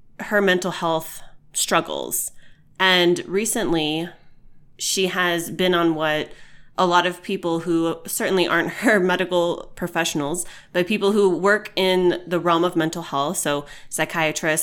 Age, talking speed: 20-39, 135 wpm